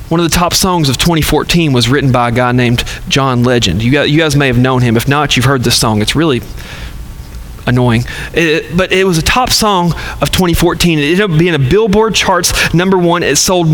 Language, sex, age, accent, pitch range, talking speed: English, male, 40-59, American, 125-175 Hz, 225 wpm